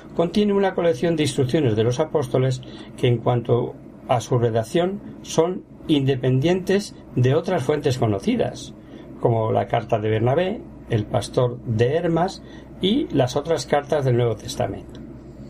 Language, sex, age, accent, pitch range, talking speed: Spanish, male, 60-79, Spanish, 115-155 Hz, 140 wpm